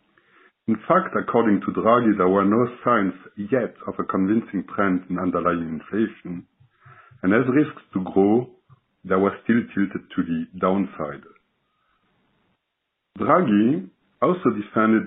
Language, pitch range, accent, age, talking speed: English, 90-115 Hz, French, 60-79, 125 wpm